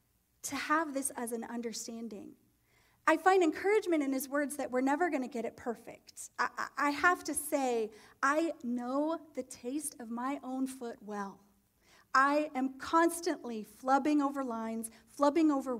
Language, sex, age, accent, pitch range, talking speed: English, female, 30-49, American, 240-310 Hz, 155 wpm